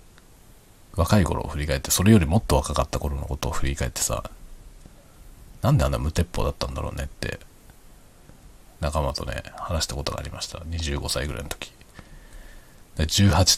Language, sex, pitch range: Japanese, male, 75-95 Hz